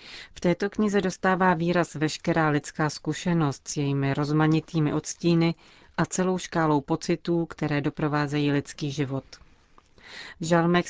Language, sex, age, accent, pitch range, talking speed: Czech, female, 30-49, native, 145-170 Hz, 120 wpm